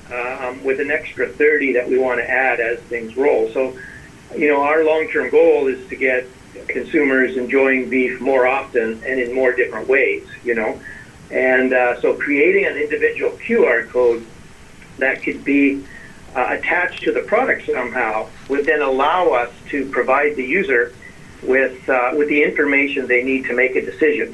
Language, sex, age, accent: English, male, 50-69, American